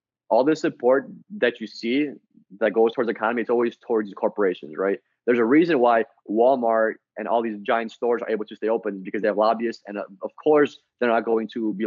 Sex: male